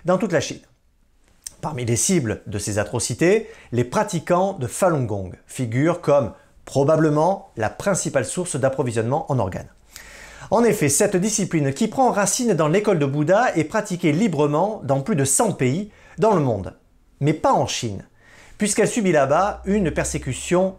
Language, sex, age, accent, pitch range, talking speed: French, male, 40-59, French, 125-195 Hz, 160 wpm